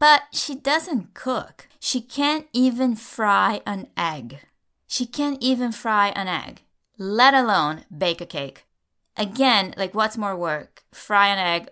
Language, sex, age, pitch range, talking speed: English, female, 20-39, 180-250 Hz, 150 wpm